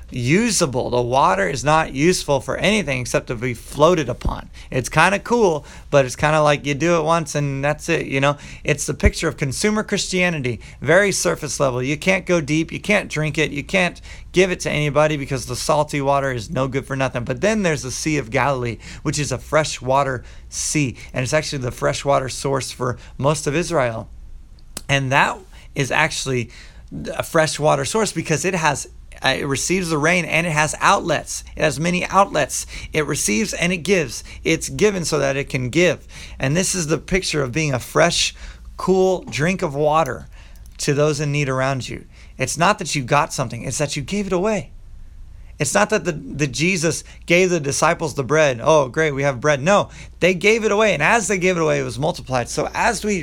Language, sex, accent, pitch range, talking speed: English, male, American, 130-170 Hz, 205 wpm